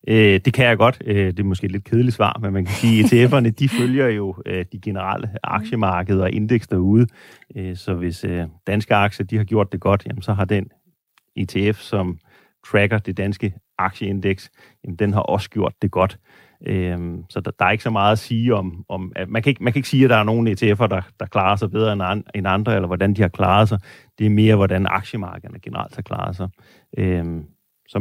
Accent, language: native, Danish